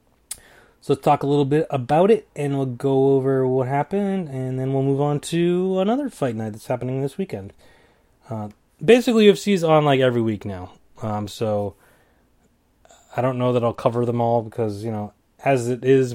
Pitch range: 115-145 Hz